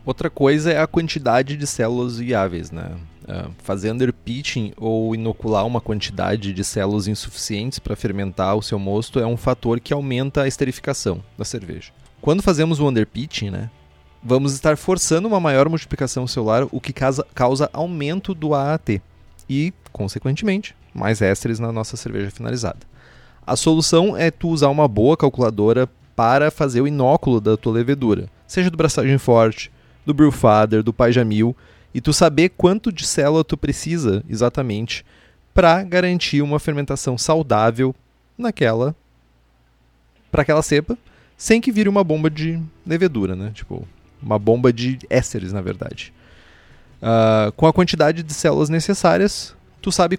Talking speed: 150 wpm